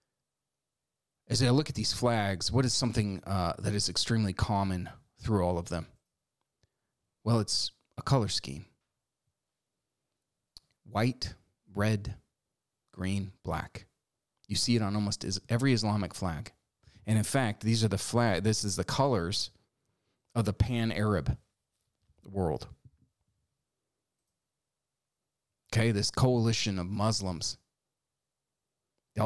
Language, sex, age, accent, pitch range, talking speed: English, male, 30-49, American, 95-115 Hz, 115 wpm